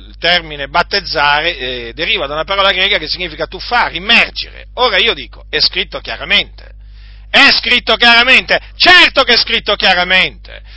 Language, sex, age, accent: Italian, male, 50-69, native